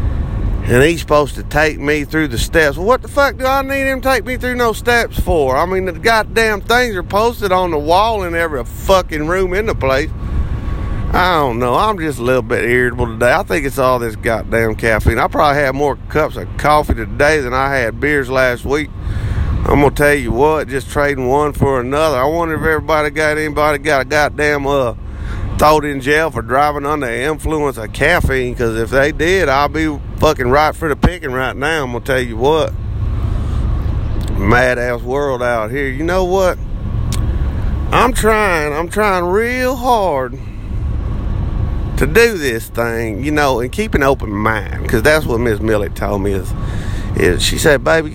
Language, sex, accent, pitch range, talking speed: English, male, American, 110-160 Hz, 200 wpm